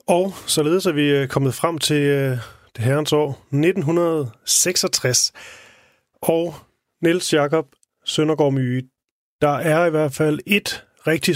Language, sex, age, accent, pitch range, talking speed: Danish, male, 30-49, native, 135-170 Hz, 130 wpm